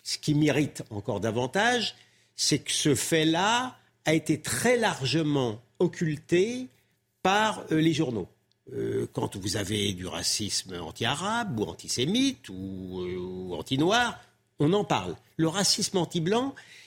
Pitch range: 125-180 Hz